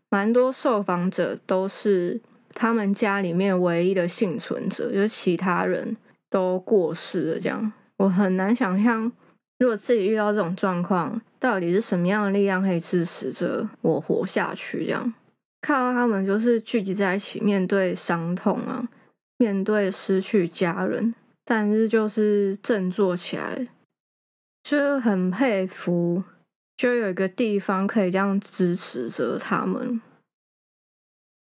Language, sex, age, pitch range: Chinese, female, 20-39, 185-235 Hz